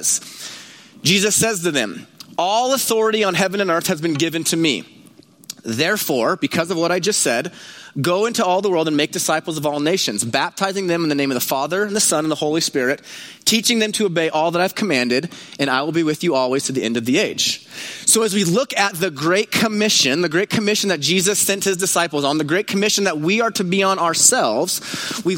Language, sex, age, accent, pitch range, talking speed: English, male, 30-49, American, 160-210 Hz, 230 wpm